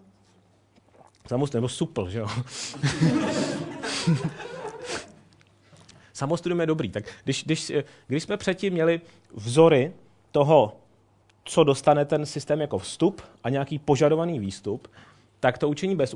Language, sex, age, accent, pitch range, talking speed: Czech, male, 30-49, native, 110-150 Hz, 115 wpm